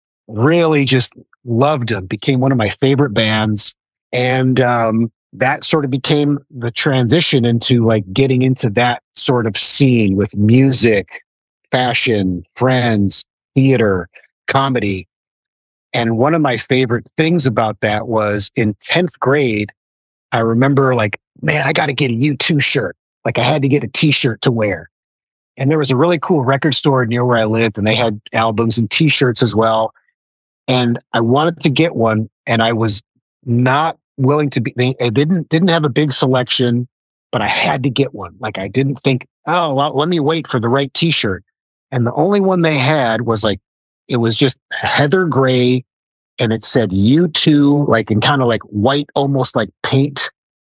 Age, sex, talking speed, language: 30-49, male, 180 wpm, English